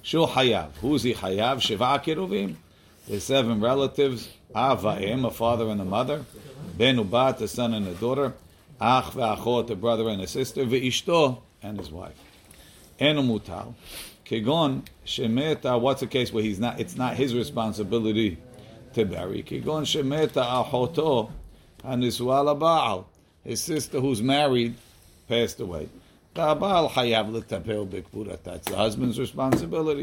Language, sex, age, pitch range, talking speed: English, male, 50-69, 105-135 Hz, 125 wpm